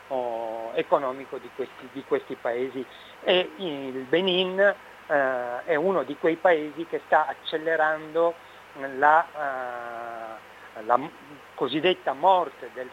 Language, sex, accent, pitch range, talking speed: Italian, male, native, 125-160 Hz, 120 wpm